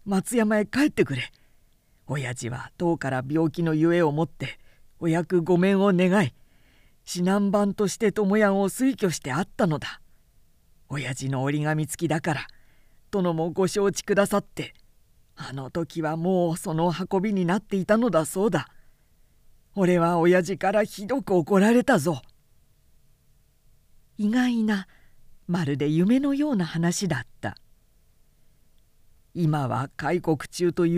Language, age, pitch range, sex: Japanese, 40-59, 155-205 Hz, female